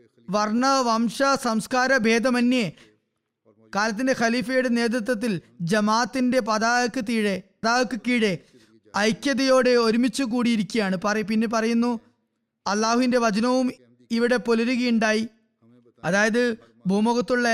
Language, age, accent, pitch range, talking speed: Malayalam, 20-39, native, 210-245 Hz, 80 wpm